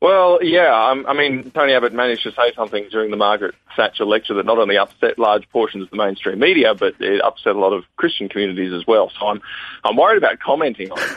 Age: 40-59